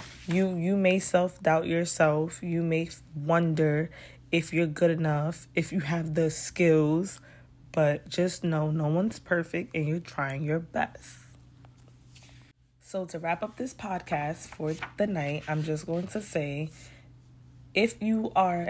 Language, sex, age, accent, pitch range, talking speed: English, female, 20-39, American, 150-175 Hz, 145 wpm